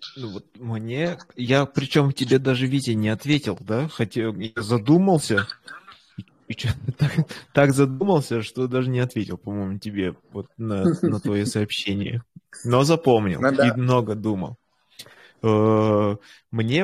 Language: Russian